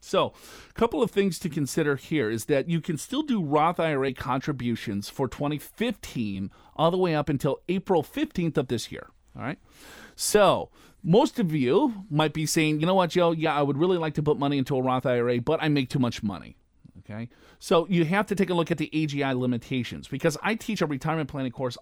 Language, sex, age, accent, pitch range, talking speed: English, male, 40-59, American, 125-175 Hz, 215 wpm